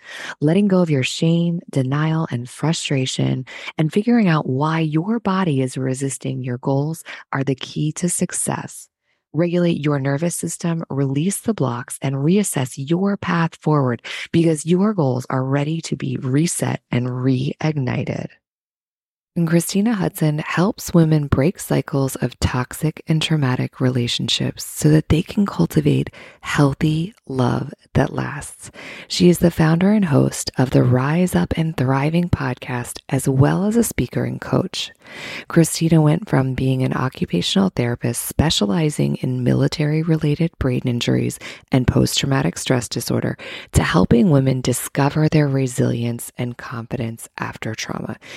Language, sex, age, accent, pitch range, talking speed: English, female, 20-39, American, 130-170 Hz, 140 wpm